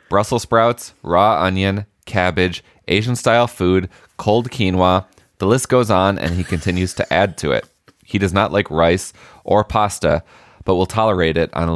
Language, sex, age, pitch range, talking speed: English, male, 20-39, 90-115 Hz, 170 wpm